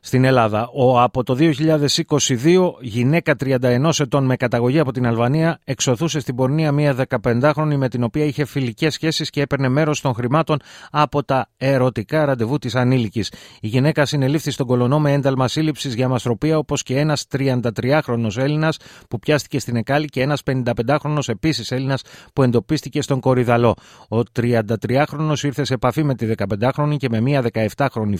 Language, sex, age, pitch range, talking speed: Greek, male, 30-49, 115-140 Hz, 160 wpm